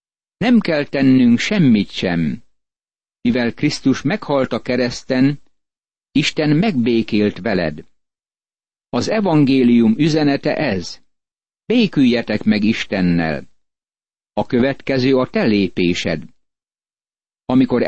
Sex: male